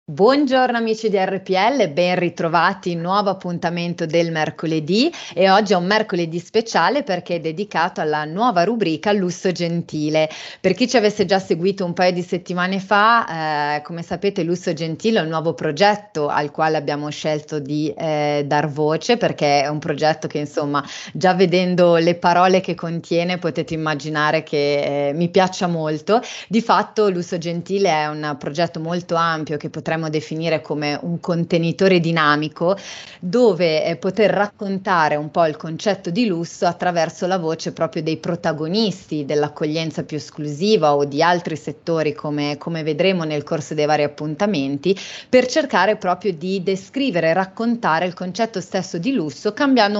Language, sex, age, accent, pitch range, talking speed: Italian, female, 30-49, native, 155-195 Hz, 155 wpm